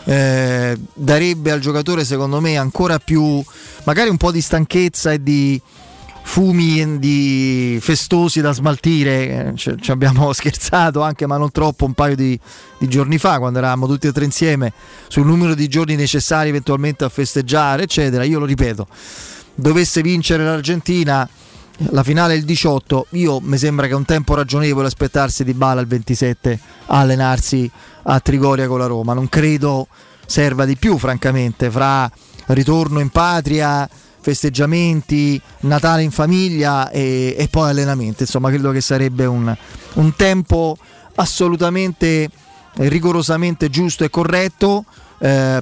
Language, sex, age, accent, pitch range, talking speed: Italian, male, 20-39, native, 135-160 Hz, 145 wpm